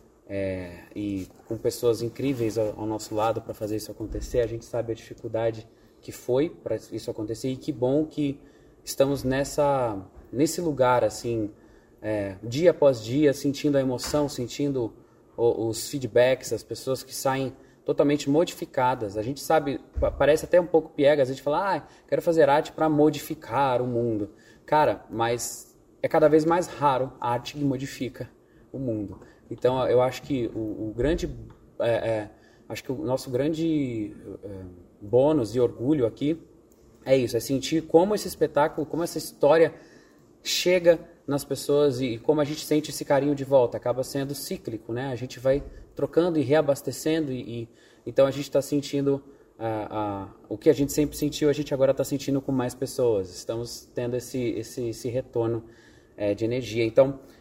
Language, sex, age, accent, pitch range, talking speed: Portuguese, male, 20-39, Brazilian, 115-145 Hz, 175 wpm